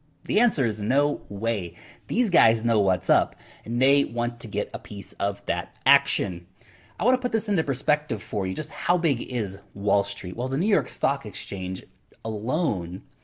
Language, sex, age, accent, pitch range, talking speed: English, male, 30-49, American, 110-150 Hz, 190 wpm